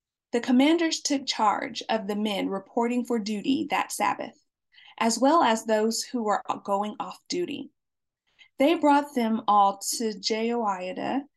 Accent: American